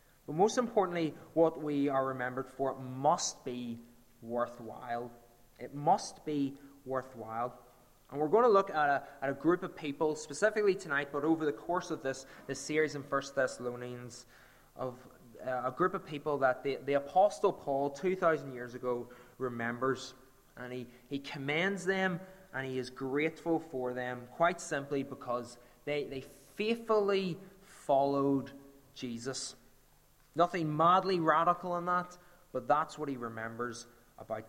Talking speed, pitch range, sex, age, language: 150 wpm, 125-160 Hz, male, 20-39, English